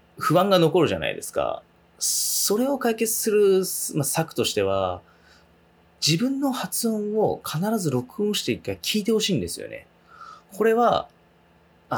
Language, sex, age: Japanese, male, 20-39